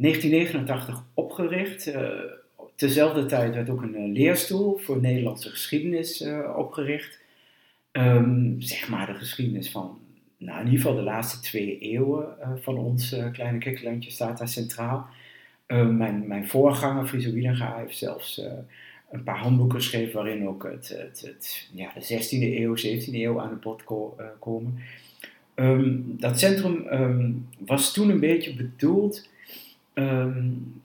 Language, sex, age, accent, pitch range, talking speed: Dutch, male, 50-69, Dutch, 120-145 Hz, 130 wpm